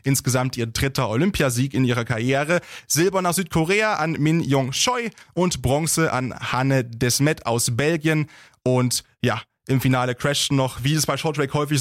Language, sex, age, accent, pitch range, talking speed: German, male, 20-39, German, 125-155 Hz, 170 wpm